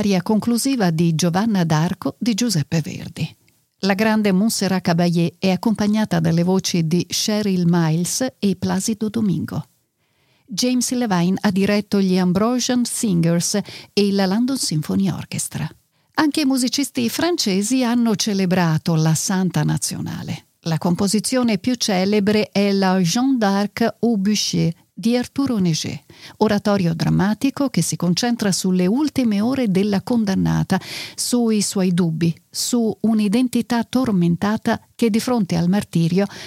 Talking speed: 125 wpm